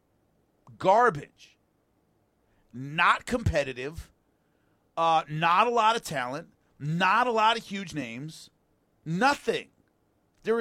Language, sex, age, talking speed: English, male, 40-59, 95 wpm